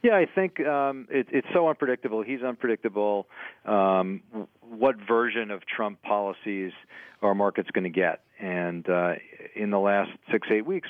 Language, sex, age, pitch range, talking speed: English, male, 40-59, 95-110 Hz, 160 wpm